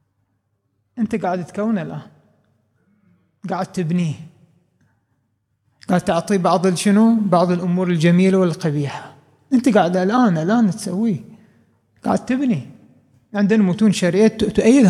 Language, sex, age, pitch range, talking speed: Arabic, male, 30-49, 155-225 Hz, 100 wpm